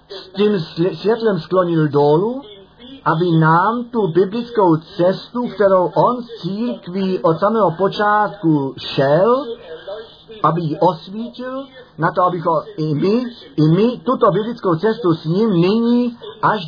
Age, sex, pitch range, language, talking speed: 50-69, male, 160-215 Hz, Czech, 125 wpm